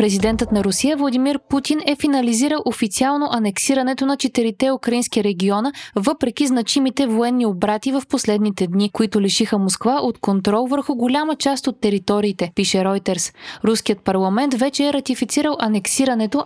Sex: female